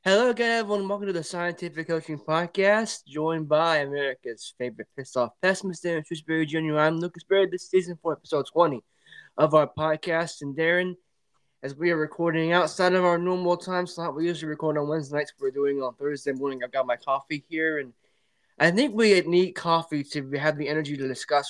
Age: 20-39